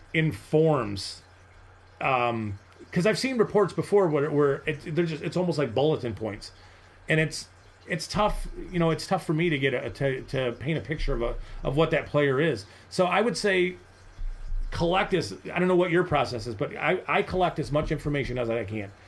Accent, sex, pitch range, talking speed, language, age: American, male, 120-170 Hz, 210 wpm, English, 30-49